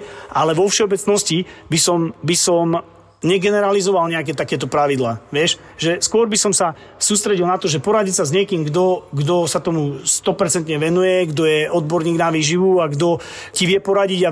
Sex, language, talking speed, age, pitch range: male, Slovak, 170 wpm, 30-49, 155-195 Hz